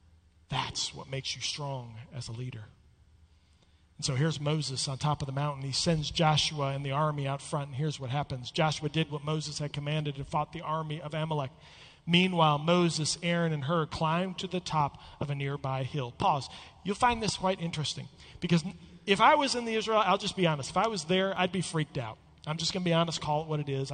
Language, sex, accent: English, male, American